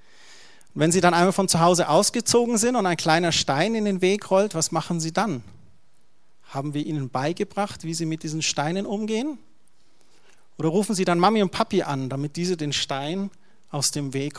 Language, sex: German, male